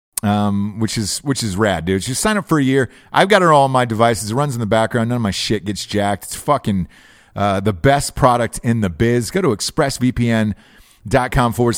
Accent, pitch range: American, 110-155 Hz